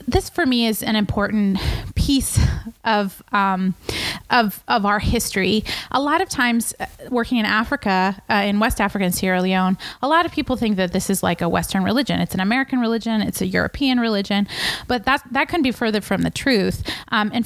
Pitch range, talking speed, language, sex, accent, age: 190-245 Hz, 200 wpm, English, female, American, 20-39